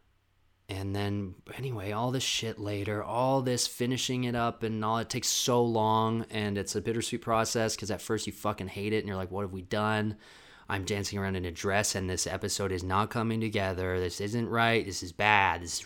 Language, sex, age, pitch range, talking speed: English, male, 20-39, 90-115 Hz, 220 wpm